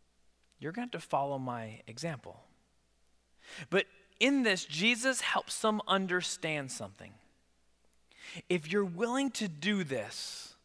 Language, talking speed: English, 125 wpm